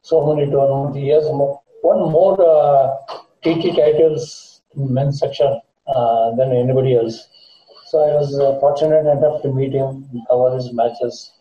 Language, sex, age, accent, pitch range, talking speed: English, male, 60-79, Indian, 125-165 Hz, 160 wpm